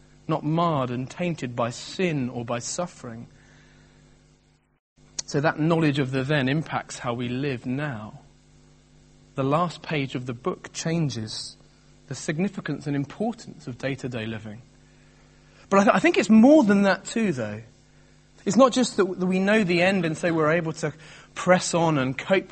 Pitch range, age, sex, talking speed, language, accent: 125-175 Hz, 30-49, male, 165 wpm, English, British